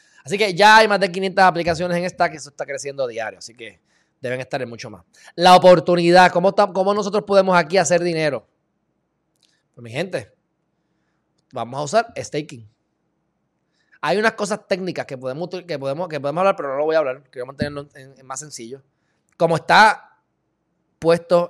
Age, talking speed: 20-39, 185 wpm